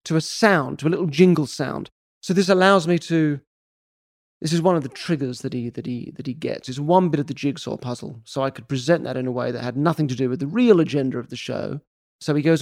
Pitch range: 125-165 Hz